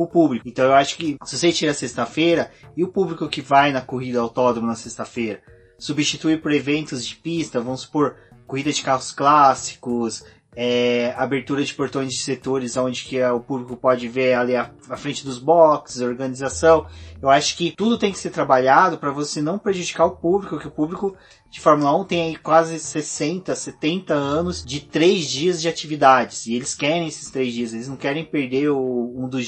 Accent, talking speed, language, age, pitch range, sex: Brazilian, 190 wpm, Portuguese, 20-39, 125-155 Hz, male